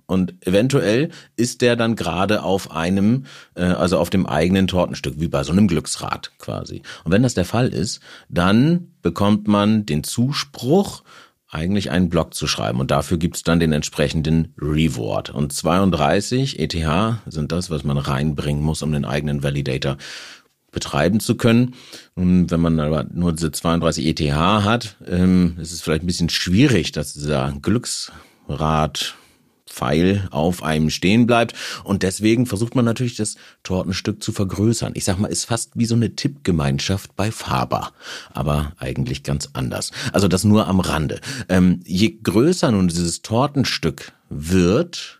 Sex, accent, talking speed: male, German, 155 wpm